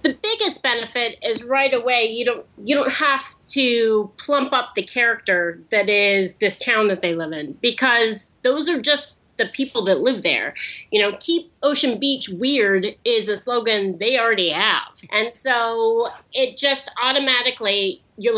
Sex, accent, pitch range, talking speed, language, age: female, American, 210-270 Hz, 165 wpm, English, 30-49